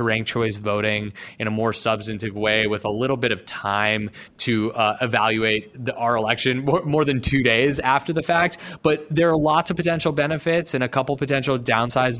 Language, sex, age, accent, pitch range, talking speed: English, male, 20-39, American, 110-130 Hz, 195 wpm